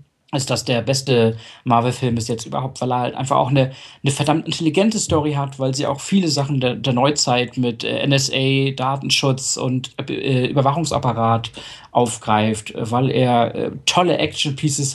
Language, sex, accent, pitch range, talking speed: German, male, German, 115-135 Hz, 155 wpm